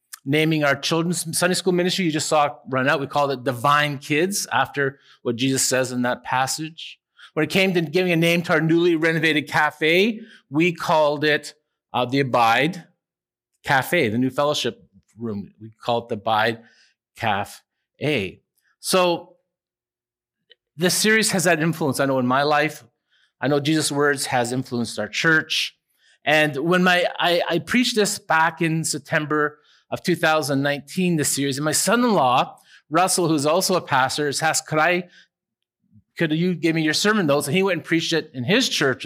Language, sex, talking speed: English, male, 180 wpm